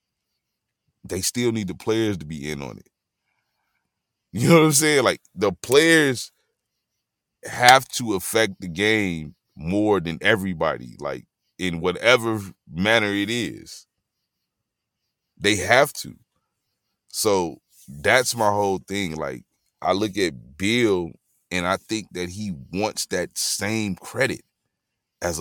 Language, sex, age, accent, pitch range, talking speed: English, male, 30-49, American, 95-135 Hz, 130 wpm